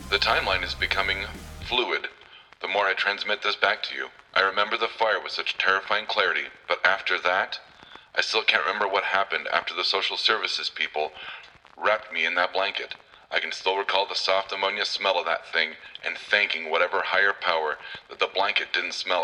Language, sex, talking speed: English, male, 190 wpm